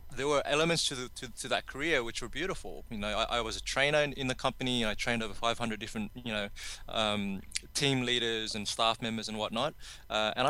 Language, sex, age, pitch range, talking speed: English, male, 20-39, 105-130 Hz, 235 wpm